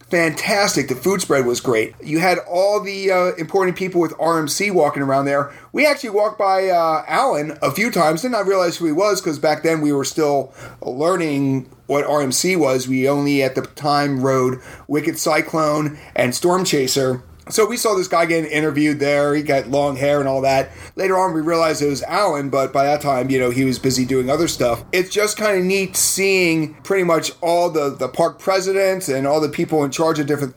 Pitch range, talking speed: 140-185 Hz, 215 wpm